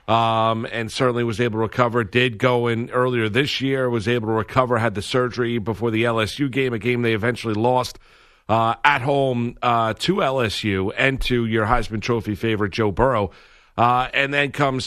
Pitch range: 115-130 Hz